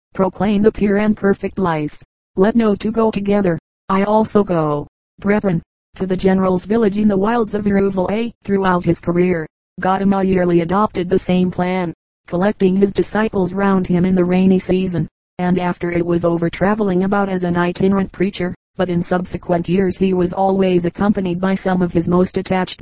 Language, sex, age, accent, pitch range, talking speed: English, female, 30-49, American, 180-195 Hz, 180 wpm